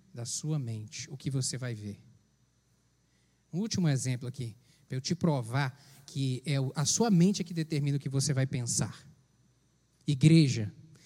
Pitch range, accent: 150-215 Hz, Brazilian